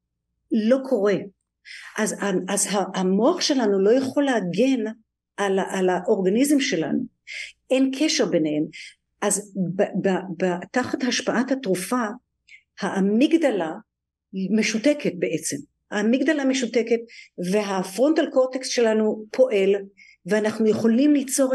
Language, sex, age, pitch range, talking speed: Hebrew, female, 50-69, 190-245 Hz, 95 wpm